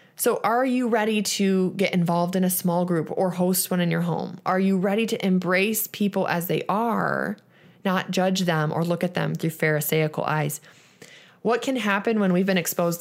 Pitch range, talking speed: 170-215 Hz, 200 wpm